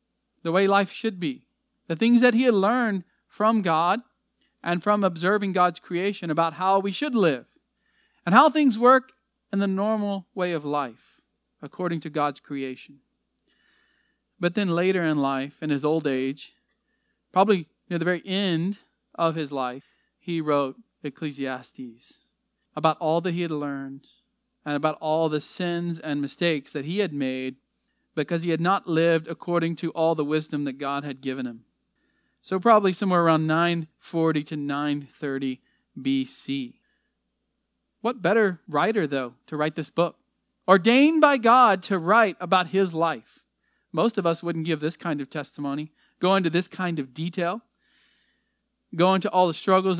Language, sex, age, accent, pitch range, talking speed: English, male, 40-59, American, 155-210 Hz, 160 wpm